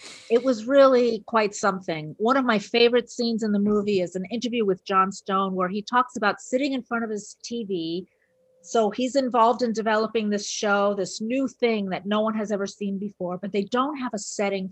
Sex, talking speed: female, 210 wpm